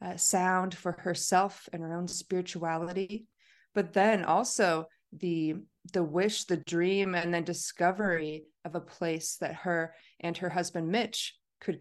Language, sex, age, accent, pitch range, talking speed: English, female, 30-49, American, 160-185 Hz, 145 wpm